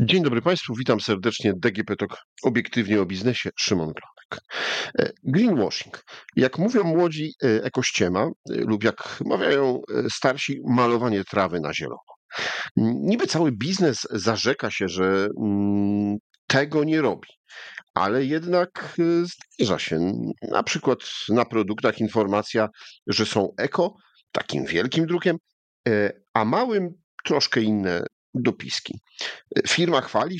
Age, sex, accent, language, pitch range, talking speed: 50-69, male, native, Polish, 105-145 Hz, 110 wpm